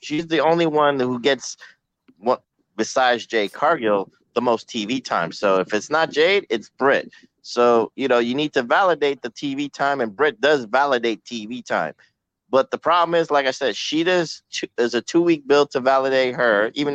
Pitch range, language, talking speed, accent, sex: 125-160 Hz, English, 195 wpm, American, male